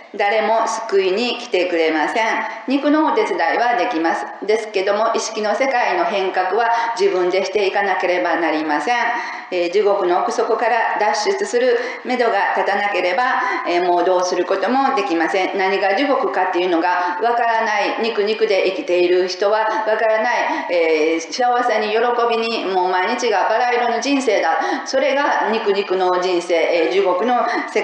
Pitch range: 185-245 Hz